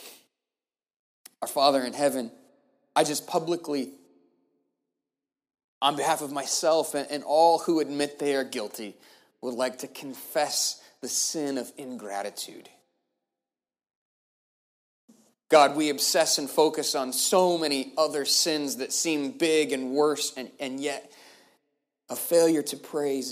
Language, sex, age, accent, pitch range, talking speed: English, male, 30-49, American, 125-150 Hz, 125 wpm